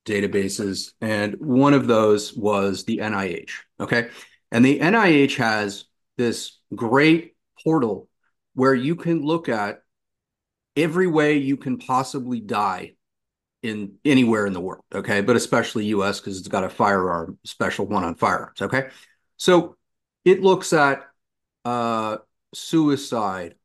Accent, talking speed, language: American, 130 wpm, English